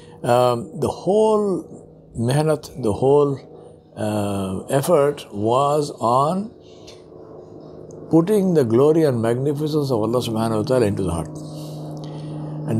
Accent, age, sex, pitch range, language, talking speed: Indian, 60-79, male, 105-145 Hz, English, 115 wpm